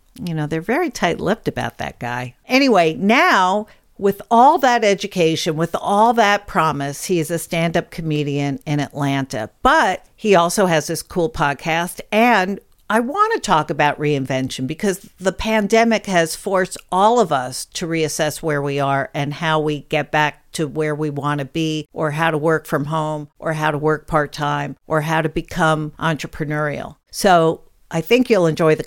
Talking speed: 175 wpm